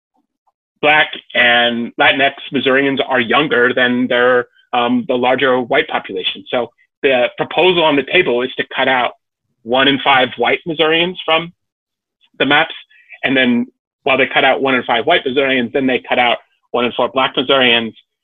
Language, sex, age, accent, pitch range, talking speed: English, male, 30-49, American, 120-155 Hz, 170 wpm